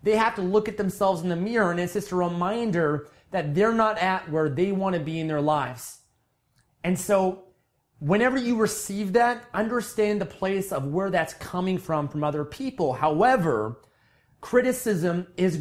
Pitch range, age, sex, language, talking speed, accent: 150-205 Hz, 30-49, male, English, 175 wpm, American